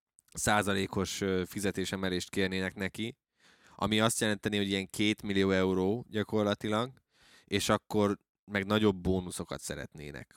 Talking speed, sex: 110 wpm, male